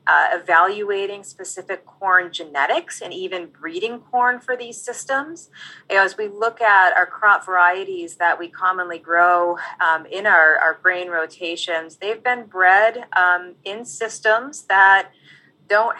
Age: 30-49